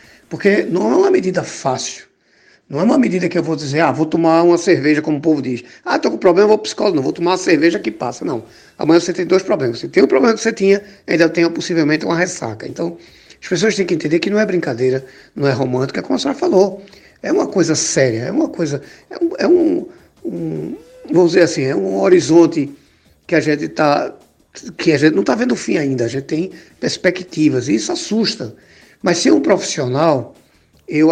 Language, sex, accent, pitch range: Portuguese, male, Brazilian, 145-190 Hz